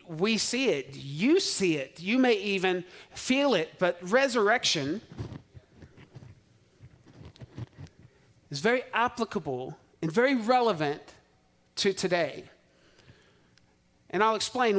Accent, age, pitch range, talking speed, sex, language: American, 40-59, 160-210 Hz, 95 wpm, male, English